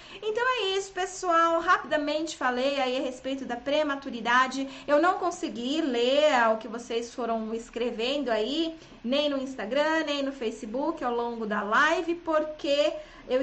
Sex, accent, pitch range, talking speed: female, Brazilian, 245-305 Hz, 150 wpm